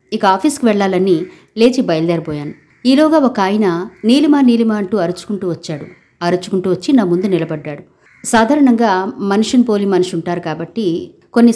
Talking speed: 130 wpm